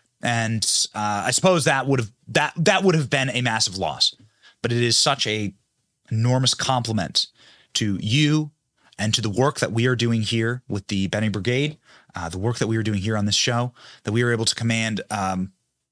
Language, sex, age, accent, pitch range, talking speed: English, male, 30-49, American, 120-175 Hz, 205 wpm